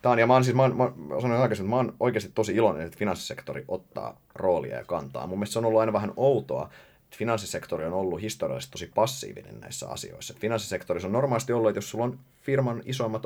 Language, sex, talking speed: Finnish, male, 195 wpm